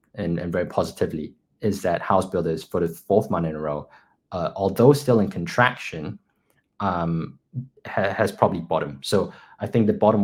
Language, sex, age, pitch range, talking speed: English, male, 20-39, 95-135 Hz, 175 wpm